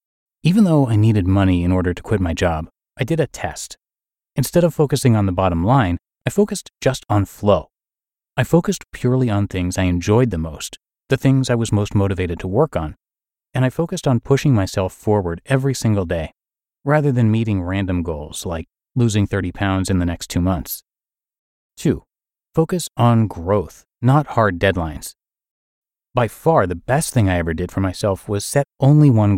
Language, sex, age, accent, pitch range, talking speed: English, male, 30-49, American, 95-130 Hz, 185 wpm